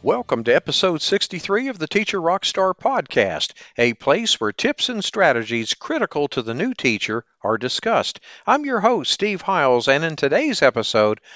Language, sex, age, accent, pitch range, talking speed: English, male, 50-69, American, 115-190 Hz, 165 wpm